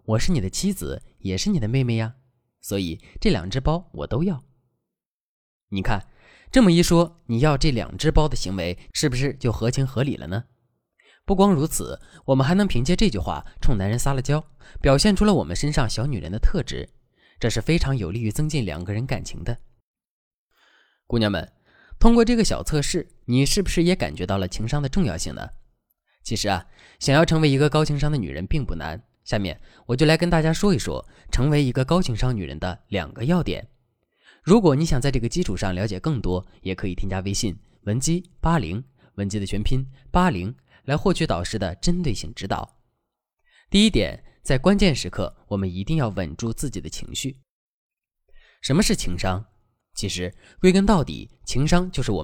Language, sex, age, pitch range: Chinese, male, 20-39, 100-155 Hz